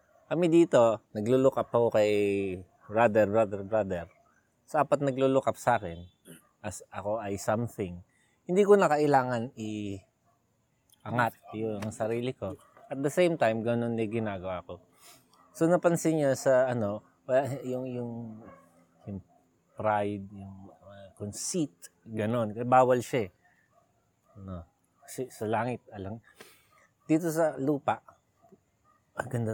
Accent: native